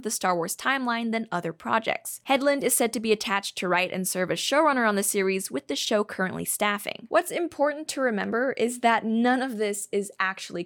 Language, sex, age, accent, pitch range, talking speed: English, female, 10-29, American, 215-285 Hz, 215 wpm